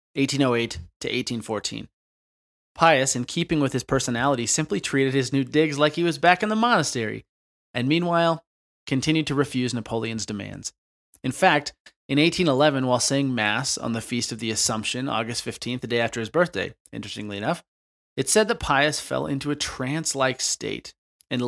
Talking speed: 170 wpm